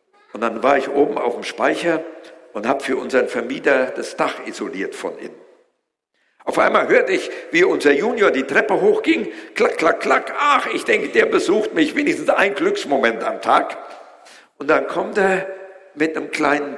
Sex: male